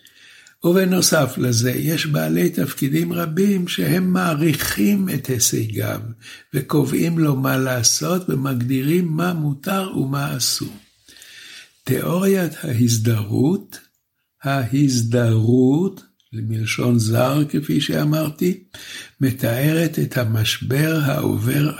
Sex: male